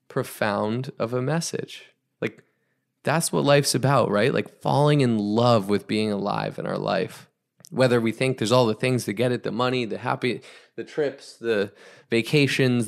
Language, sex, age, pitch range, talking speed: English, male, 20-39, 110-140 Hz, 175 wpm